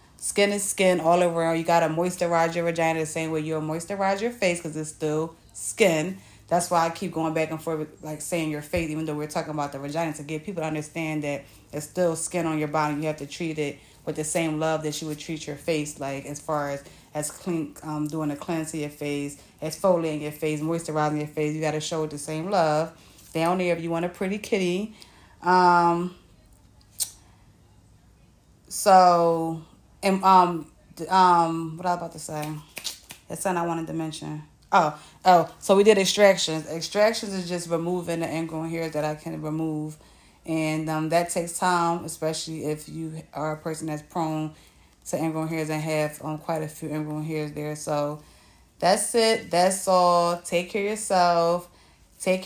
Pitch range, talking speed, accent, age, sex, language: 150-175 Hz, 195 wpm, American, 30-49, female, English